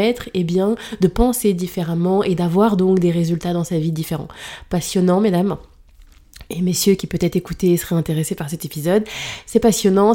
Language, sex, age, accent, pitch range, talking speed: French, female, 20-39, French, 170-215 Hz, 170 wpm